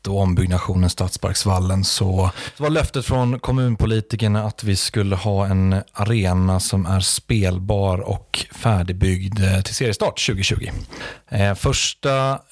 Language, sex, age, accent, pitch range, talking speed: Swedish, male, 30-49, native, 95-115 Hz, 115 wpm